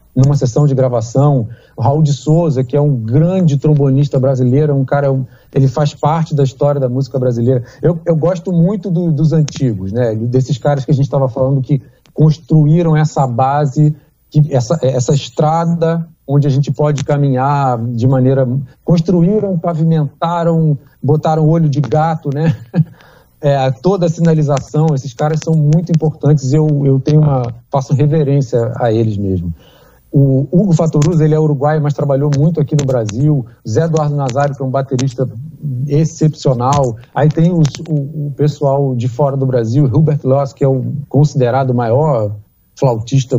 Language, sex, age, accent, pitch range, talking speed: Portuguese, male, 40-59, Brazilian, 130-155 Hz, 160 wpm